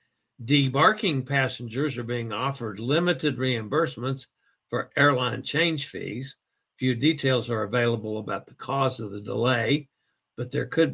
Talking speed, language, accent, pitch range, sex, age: 130 wpm, English, American, 125-150 Hz, male, 60-79